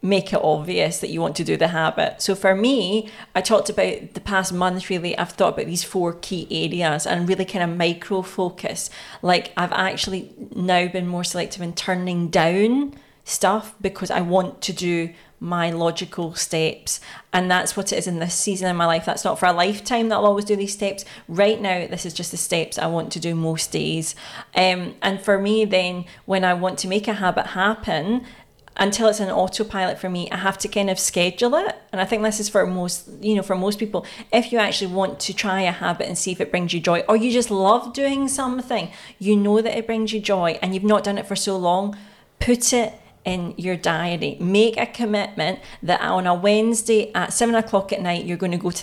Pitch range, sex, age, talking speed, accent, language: 180-210 Hz, female, 30-49, 225 wpm, British, English